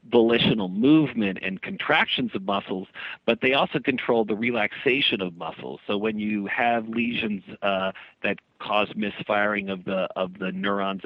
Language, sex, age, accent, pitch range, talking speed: English, male, 50-69, American, 95-115 Hz, 150 wpm